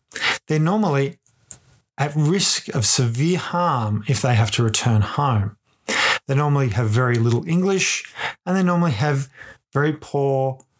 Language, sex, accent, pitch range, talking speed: English, male, Australian, 120-150 Hz, 140 wpm